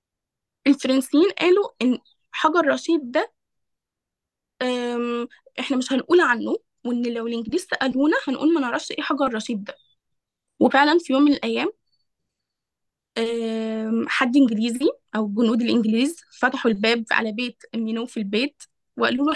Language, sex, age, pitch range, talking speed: Arabic, female, 10-29, 230-295 Hz, 125 wpm